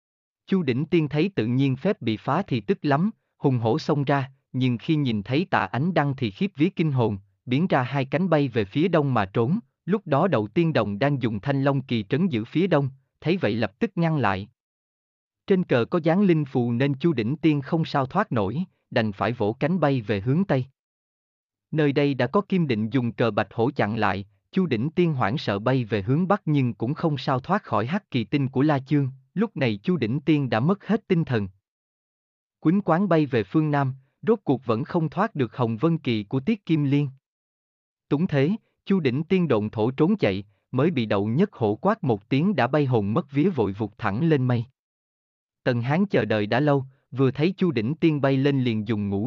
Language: Vietnamese